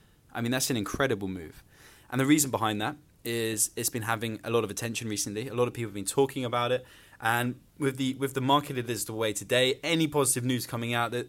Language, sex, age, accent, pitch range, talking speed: English, male, 20-39, British, 105-130 Hz, 245 wpm